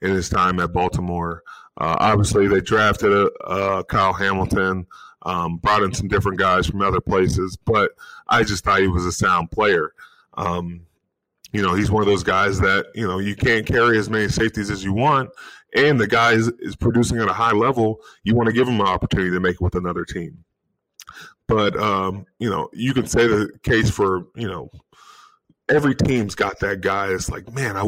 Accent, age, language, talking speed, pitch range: American, 20-39, English, 205 wpm, 95-110 Hz